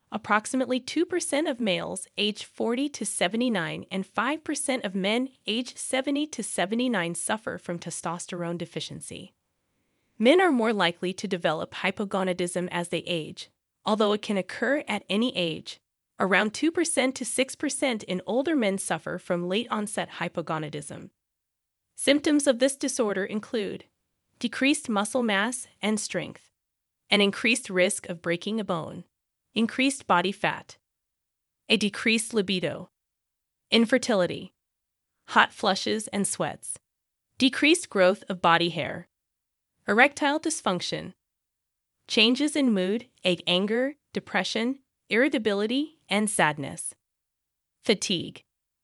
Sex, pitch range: female, 180-260 Hz